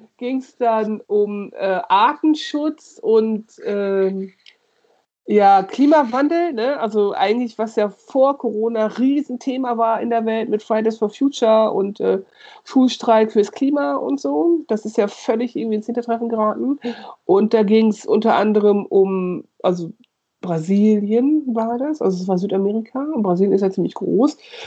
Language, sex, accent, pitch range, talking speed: German, female, German, 195-250 Hz, 150 wpm